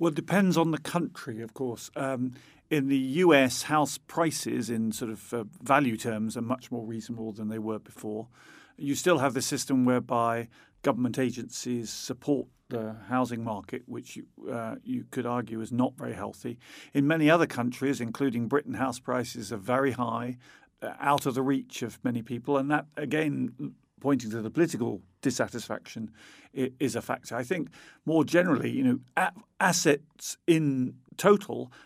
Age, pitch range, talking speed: 50-69, 115-140 Hz, 170 wpm